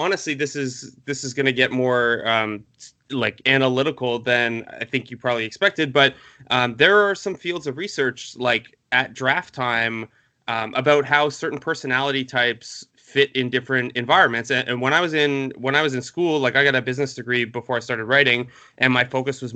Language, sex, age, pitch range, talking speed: English, male, 20-39, 120-140 Hz, 200 wpm